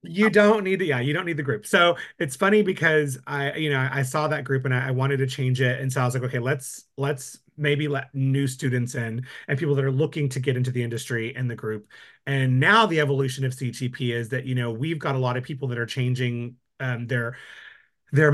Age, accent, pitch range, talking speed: 30-49, American, 130-155 Hz, 250 wpm